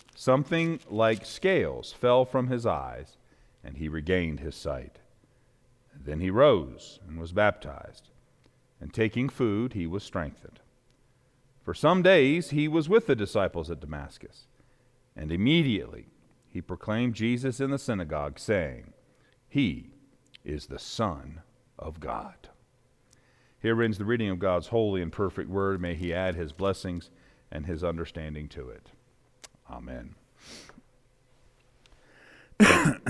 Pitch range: 90-130 Hz